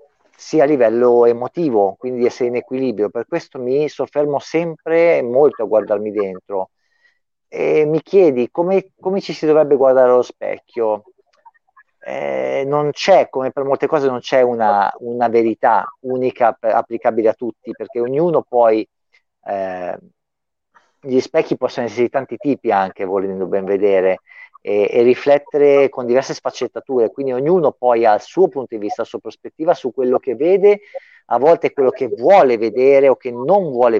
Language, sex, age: Italian, male, 50-69